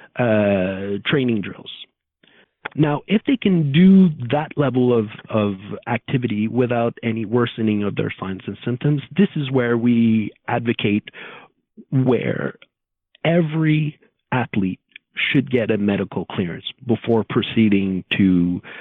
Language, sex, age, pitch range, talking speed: English, male, 40-59, 105-135 Hz, 120 wpm